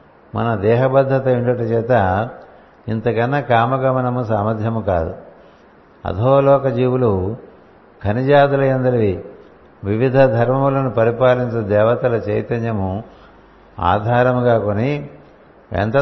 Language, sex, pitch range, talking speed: Telugu, male, 105-130 Hz, 65 wpm